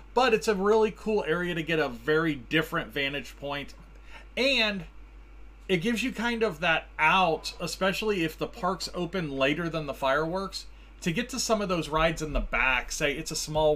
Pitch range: 145-210 Hz